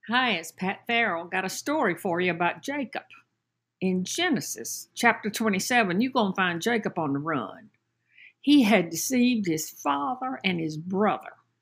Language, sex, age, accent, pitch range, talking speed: English, female, 60-79, American, 180-240 Hz, 160 wpm